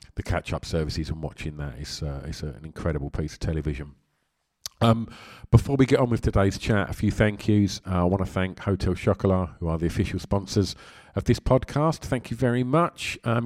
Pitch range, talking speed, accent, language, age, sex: 80-100 Hz, 195 wpm, British, English, 40-59, male